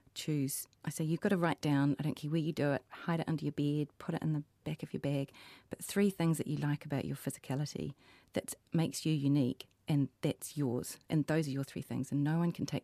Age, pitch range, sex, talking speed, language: 30-49, 135-165 Hz, female, 255 wpm, English